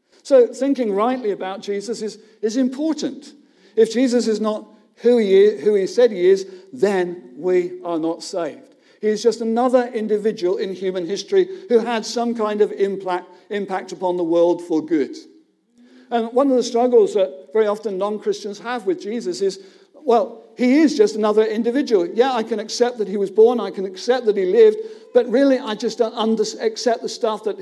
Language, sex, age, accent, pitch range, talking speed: English, male, 50-69, British, 205-265 Hz, 185 wpm